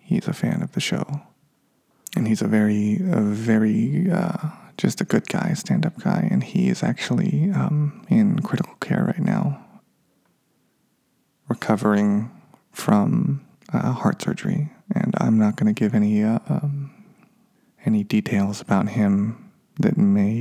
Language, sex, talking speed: English, male, 140 wpm